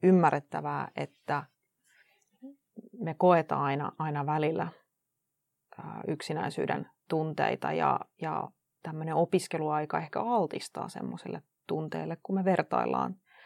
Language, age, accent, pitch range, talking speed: Finnish, 30-49, native, 150-170 Hz, 90 wpm